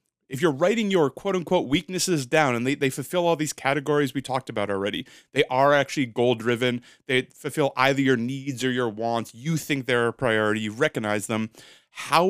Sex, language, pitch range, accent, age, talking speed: male, English, 120-155 Hz, American, 30-49, 195 wpm